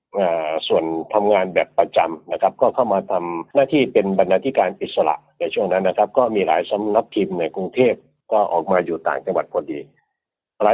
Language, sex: Thai, male